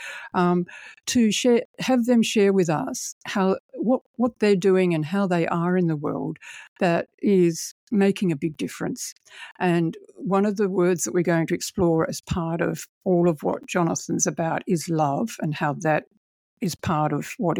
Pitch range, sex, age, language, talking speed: 160-190 Hz, female, 60-79, English, 180 wpm